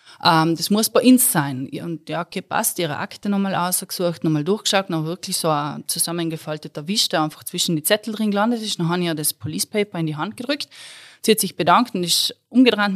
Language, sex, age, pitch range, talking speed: German, female, 20-39, 155-205 Hz, 220 wpm